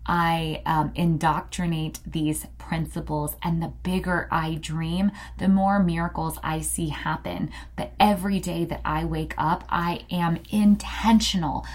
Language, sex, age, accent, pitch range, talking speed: English, female, 20-39, American, 155-190 Hz, 135 wpm